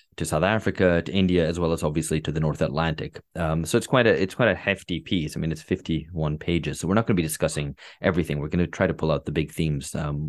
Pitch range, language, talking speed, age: 80-95 Hz, English, 280 wpm, 30-49